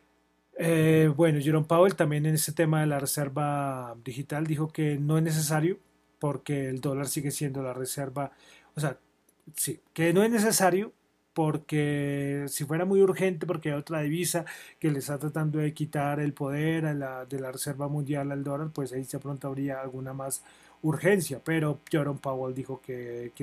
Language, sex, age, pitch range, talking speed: Spanish, male, 30-49, 135-160 Hz, 180 wpm